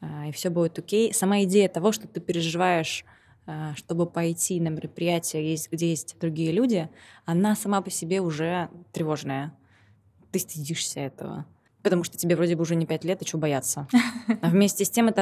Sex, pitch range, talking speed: female, 155-185 Hz, 175 wpm